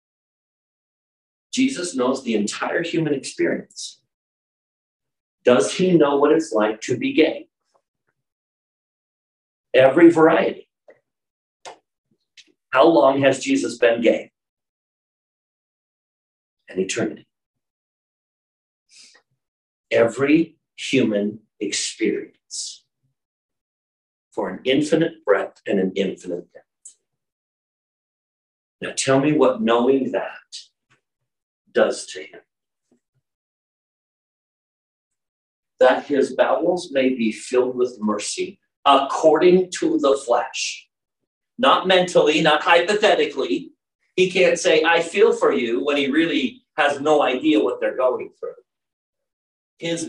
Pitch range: 125-190 Hz